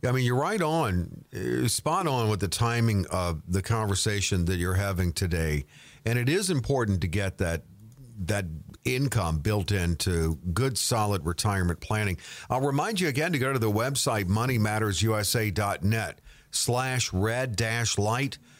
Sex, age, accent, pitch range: male, 50-69, American, 100-130 Hz